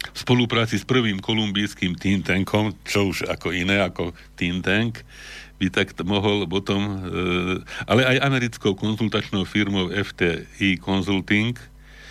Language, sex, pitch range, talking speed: Slovak, male, 85-105 Hz, 130 wpm